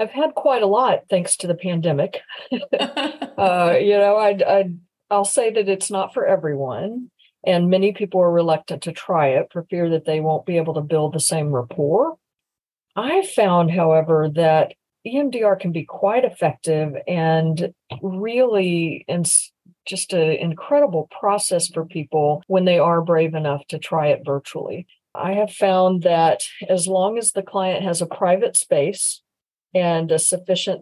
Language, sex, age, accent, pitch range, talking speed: English, female, 50-69, American, 160-195 Hz, 160 wpm